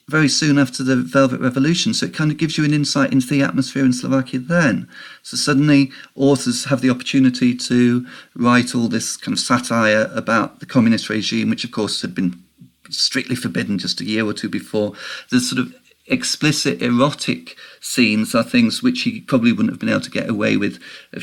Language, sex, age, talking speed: Slovak, male, 40-59, 200 wpm